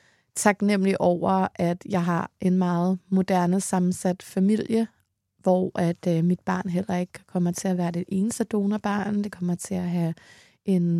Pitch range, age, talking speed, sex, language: 175-190 Hz, 20-39, 165 wpm, female, Danish